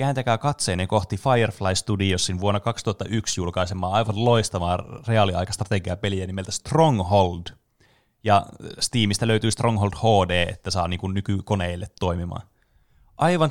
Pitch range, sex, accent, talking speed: 90-110 Hz, male, native, 105 wpm